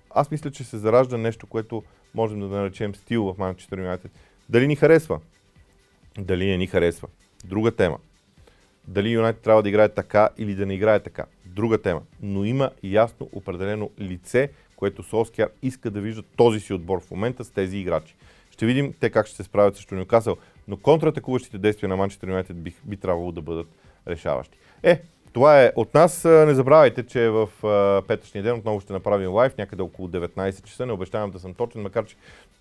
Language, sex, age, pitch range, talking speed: Bulgarian, male, 30-49, 95-115 Hz, 190 wpm